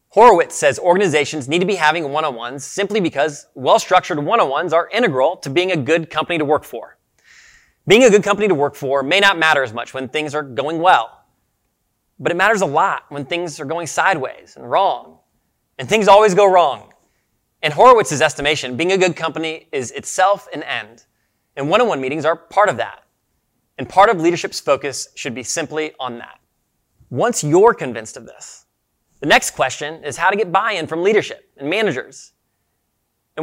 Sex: male